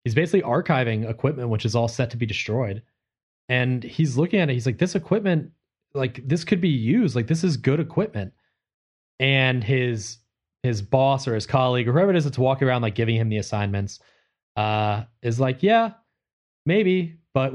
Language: English